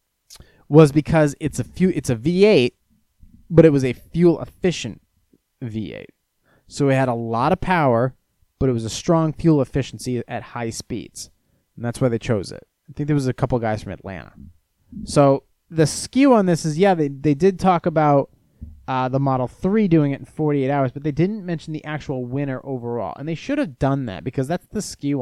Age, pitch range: 30-49, 125-155 Hz